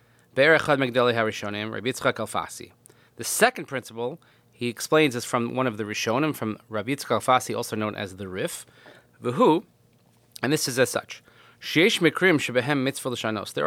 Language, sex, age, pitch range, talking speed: English, male, 30-49, 115-140 Hz, 115 wpm